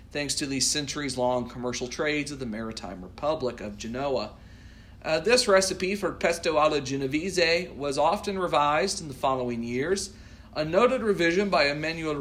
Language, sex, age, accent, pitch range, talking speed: English, male, 40-59, American, 125-175 Hz, 150 wpm